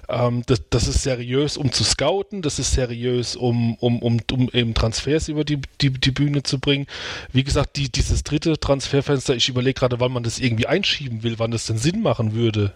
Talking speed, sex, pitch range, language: 205 wpm, male, 115-140 Hz, German